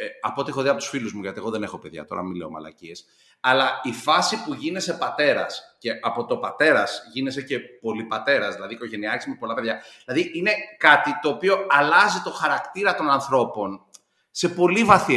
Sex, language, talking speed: male, Greek, 185 wpm